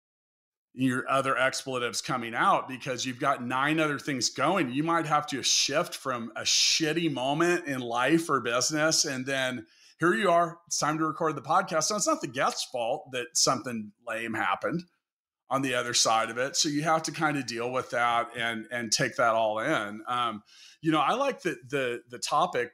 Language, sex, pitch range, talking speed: English, male, 125-160 Hz, 200 wpm